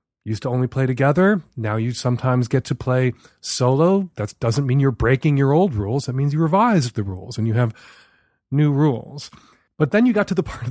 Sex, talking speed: male, 220 wpm